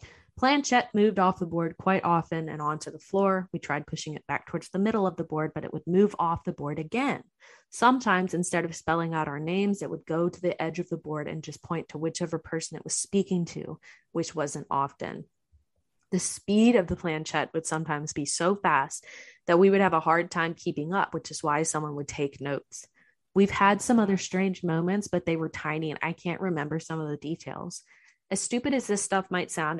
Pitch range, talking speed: 155-185 Hz, 220 wpm